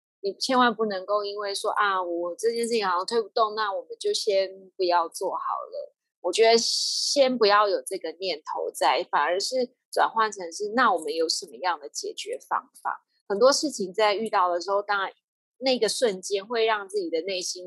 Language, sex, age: Chinese, female, 20-39